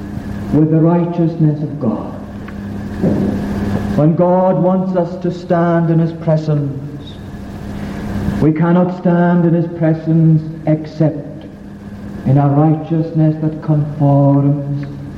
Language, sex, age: English, male, 60-79